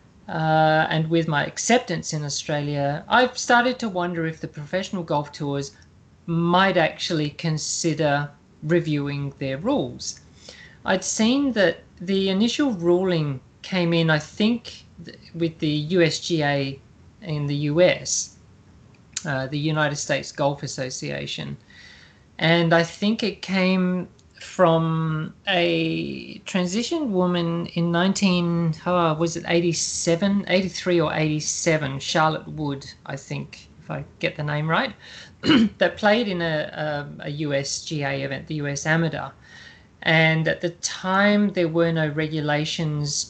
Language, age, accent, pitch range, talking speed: English, 40-59, Australian, 145-175 Hz, 125 wpm